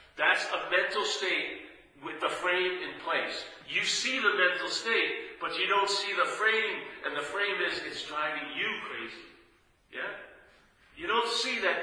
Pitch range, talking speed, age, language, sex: 180-245 Hz, 165 wpm, 50-69, English, male